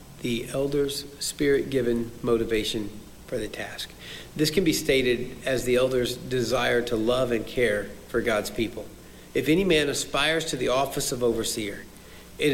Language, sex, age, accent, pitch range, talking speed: English, male, 50-69, American, 110-160 Hz, 160 wpm